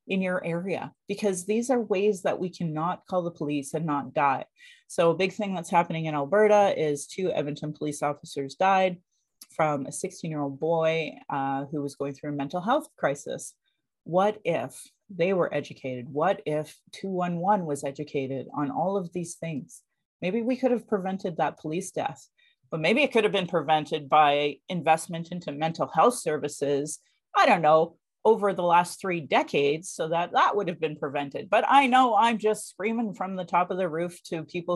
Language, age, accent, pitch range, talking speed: English, 40-59, American, 150-200 Hz, 190 wpm